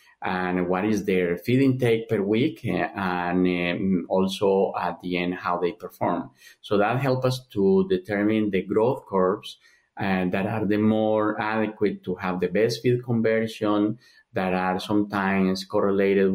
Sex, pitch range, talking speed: male, 90-105 Hz, 160 wpm